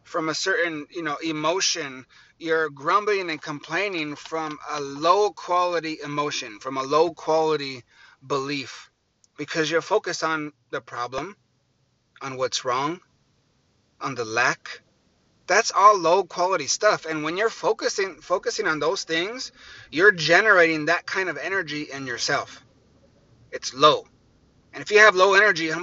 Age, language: 30-49, English